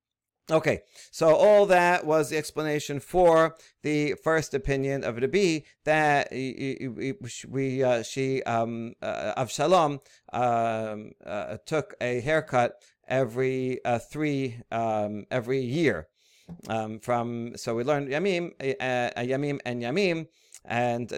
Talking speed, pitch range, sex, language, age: 120 wpm, 125-160 Hz, male, English, 50-69